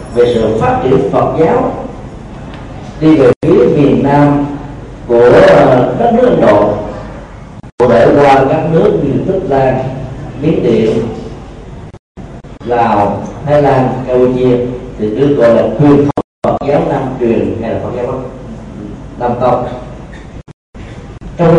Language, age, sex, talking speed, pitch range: Vietnamese, 40-59, male, 120 wpm, 120-150 Hz